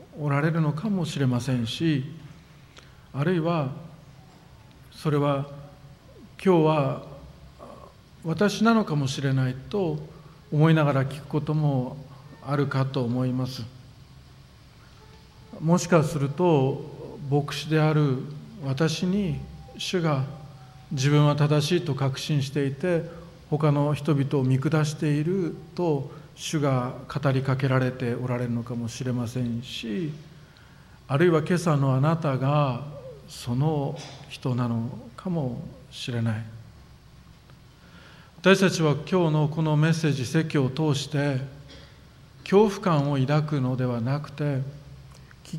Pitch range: 135-155 Hz